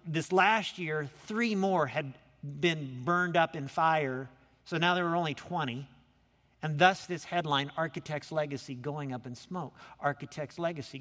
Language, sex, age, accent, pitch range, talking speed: English, male, 50-69, American, 155-200 Hz, 160 wpm